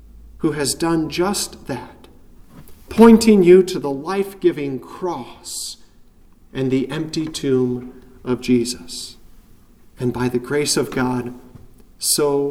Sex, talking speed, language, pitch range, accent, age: male, 115 wpm, English, 140-225 Hz, American, 40-59